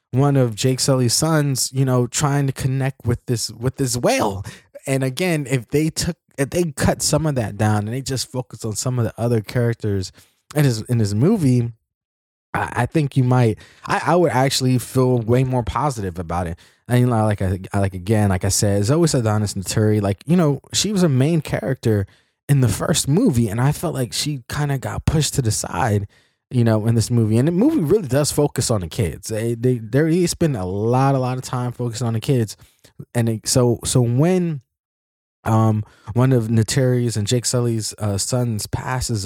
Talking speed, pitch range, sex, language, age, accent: 210 wpm, 110-140 Hz, male, English, 20-39, American